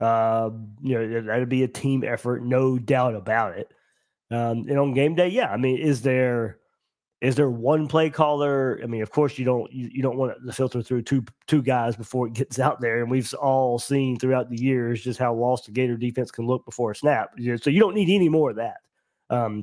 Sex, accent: male, American